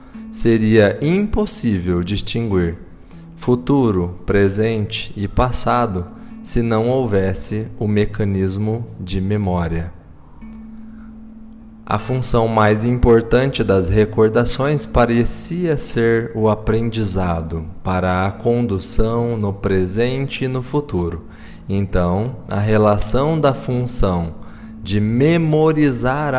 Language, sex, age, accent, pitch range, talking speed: Portuguese, male, 20-39, Brazilian, 95-125 Hz, 90 wpm